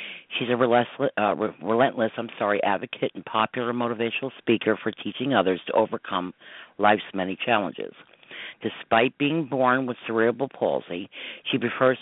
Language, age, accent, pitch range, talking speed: English, 50-69, American, 110-130 Hz, 130 wpm